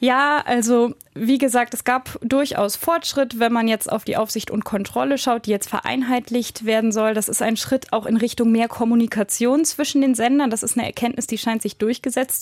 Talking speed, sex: 205 wpm, female